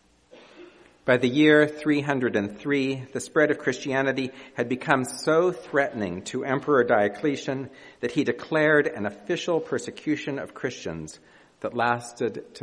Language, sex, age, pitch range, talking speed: English, male, 50-69, 95-130 Hz, 120 wpm